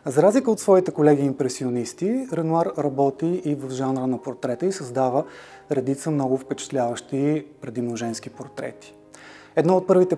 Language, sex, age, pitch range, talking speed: Bulgarian, male, 30-49, 130-160 Hz, 135 wpm